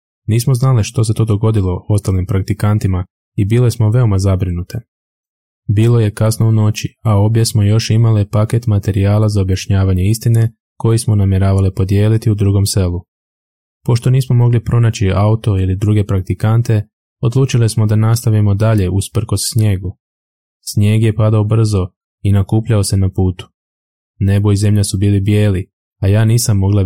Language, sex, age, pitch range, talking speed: Croatian, male, 20-39, 95-110 Hz, 155 wpm